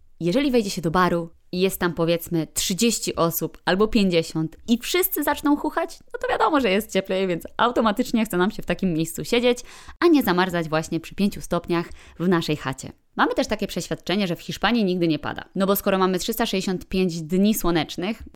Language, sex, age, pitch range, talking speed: Polish, female, 20-39, 165-225 Hz, 195 wpm